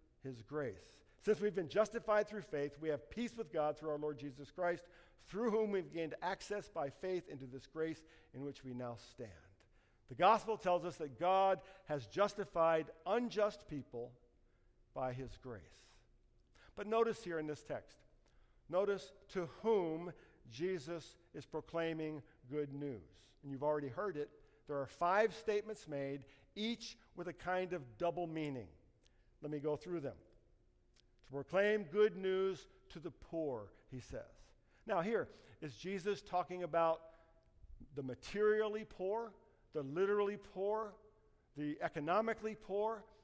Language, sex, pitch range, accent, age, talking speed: English, male, 145-195 Hz, American, 50-69, 145 wpm